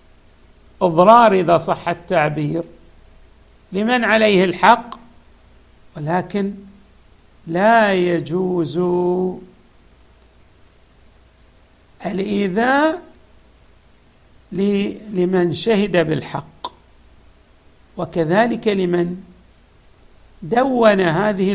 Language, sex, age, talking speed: Arabic, male, 60-79, 50 wpm